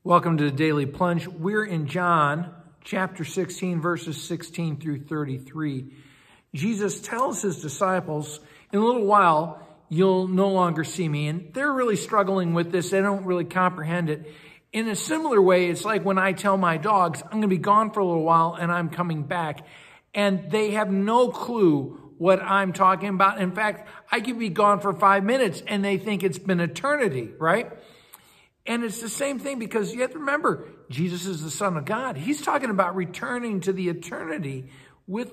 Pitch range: 165-210 Hz